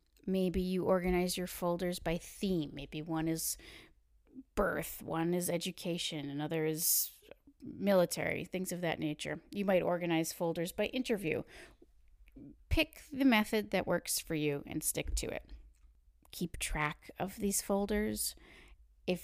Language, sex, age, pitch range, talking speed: English, female, 30-49, 160-205 Hz, 135 wpm